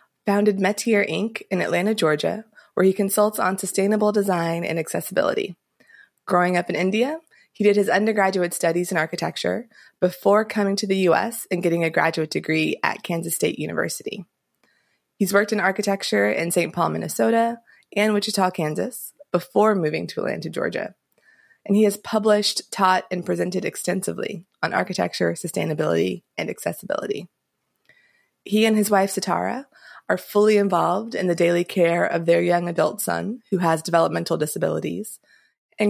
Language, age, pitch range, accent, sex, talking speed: English, 20-39, 175-210 Hz, American, female, 150 wpm